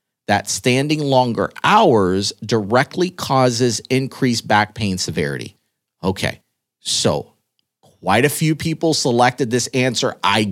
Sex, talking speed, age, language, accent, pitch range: male, 115 wpm, 30-49, English, American, 120-170 Hz